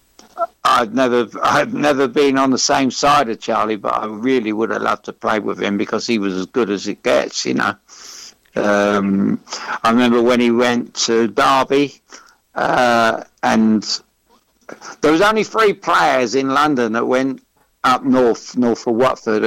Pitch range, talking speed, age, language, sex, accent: 110-140 Hz, 165 wpm, 60-79, English, male, British